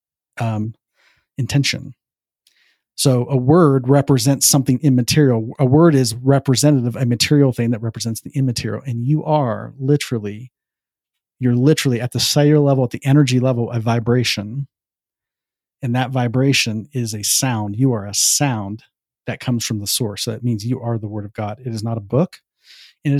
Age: 40-59